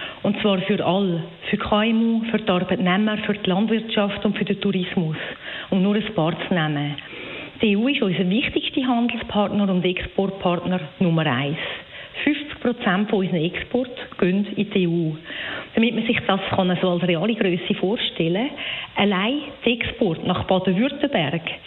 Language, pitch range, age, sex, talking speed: German, 180-225 Hz, 40-59, female, 150 wpm